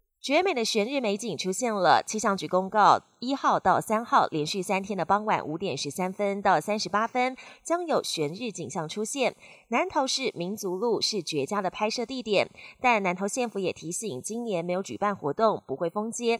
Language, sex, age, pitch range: Chinese, female, 30-49, 180-245 Hz